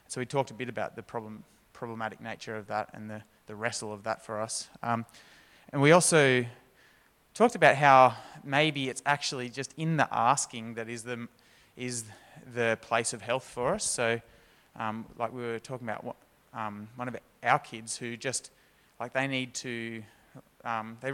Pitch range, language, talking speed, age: 115-135 Hz, English, 175 wpm, 20-39